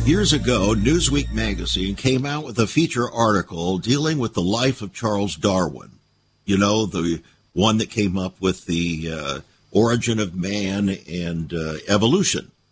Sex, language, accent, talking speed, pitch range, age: male, English, American, 155 wpm, 105-140 Hz, 60-79